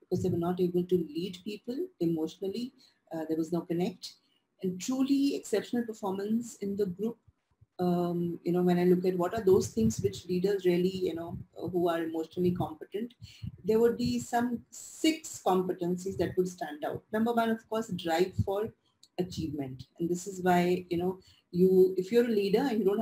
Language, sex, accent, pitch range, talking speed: English, female, Indian, 175-220 Hz, 185 wpm